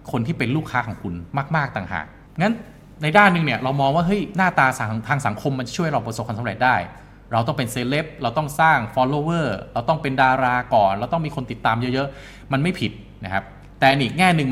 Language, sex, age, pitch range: Thai, male, 20-39, 105-140 Hz